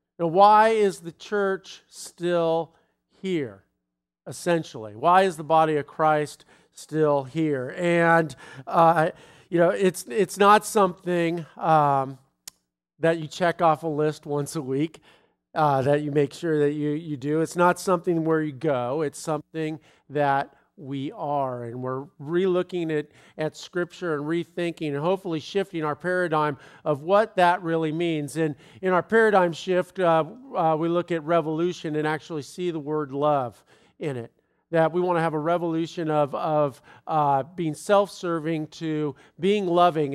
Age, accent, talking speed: 50-69, American, 160 wpm